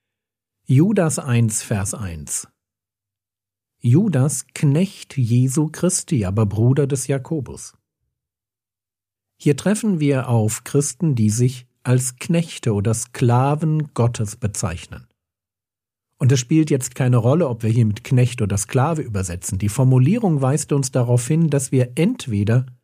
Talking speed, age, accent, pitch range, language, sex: 125 wpm, 50-69, German, 110-150 Hz, German, male